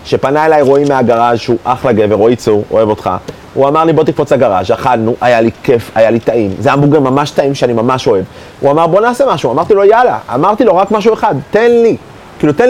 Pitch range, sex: 135-200 Hz, male